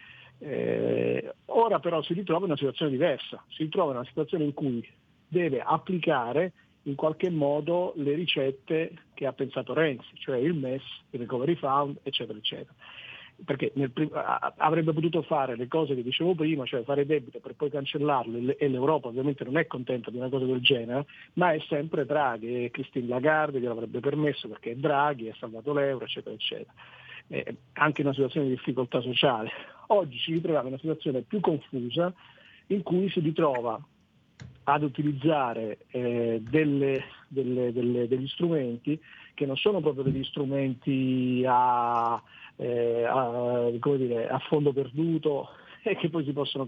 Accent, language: native, Italian